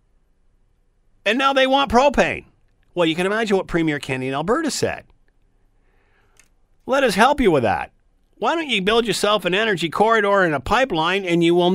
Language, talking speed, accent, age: English, 180 wpm, American, 50-69